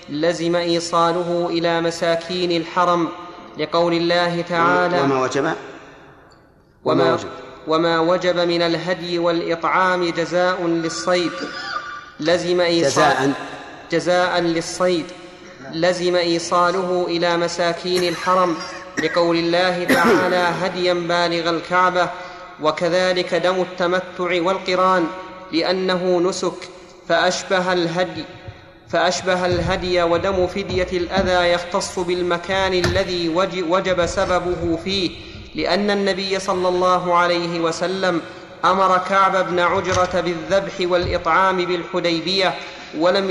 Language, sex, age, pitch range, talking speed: Arabic, male, 30-49, 175-185 Hz, 80 wpm